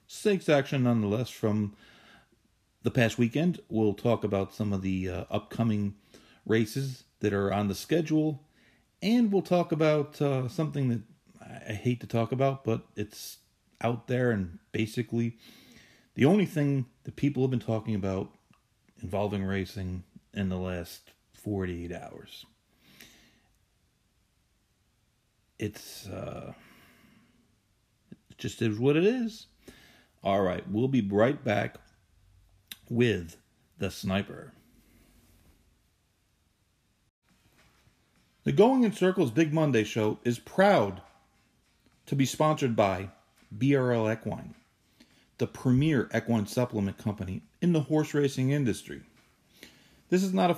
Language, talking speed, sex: English, 120 wpm, male